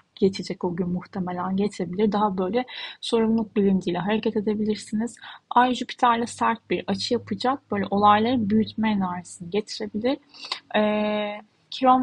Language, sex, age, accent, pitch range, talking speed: Turkish, female, 10-29, native, 195-235 Hz, 120 wpm